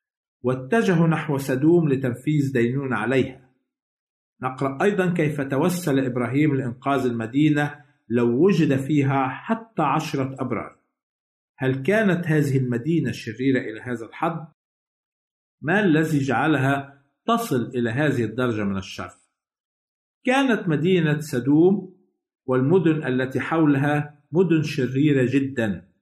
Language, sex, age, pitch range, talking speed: Arabic, male, 50-69, 130-170 Hz, 105 wpm